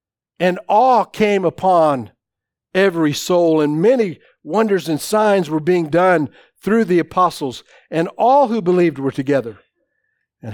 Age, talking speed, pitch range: 50-69, 135 wpm, 135-180 Hz